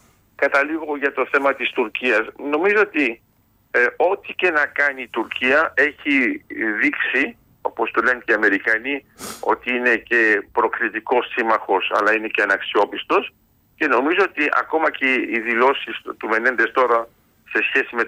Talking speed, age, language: 150 wpm, 50-69, Greek